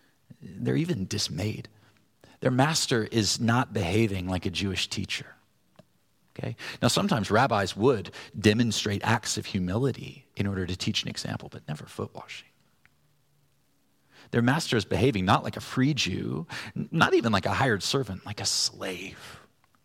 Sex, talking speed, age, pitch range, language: male, 150 wpm, 40-59, 100-125 Hz, English